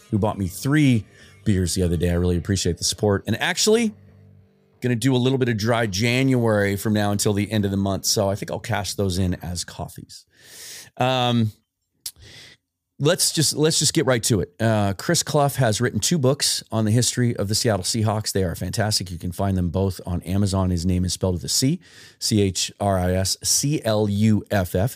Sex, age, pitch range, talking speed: male, 30-49, 90-115 Hz, 195 wpm